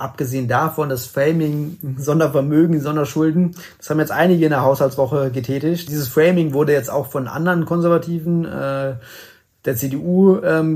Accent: German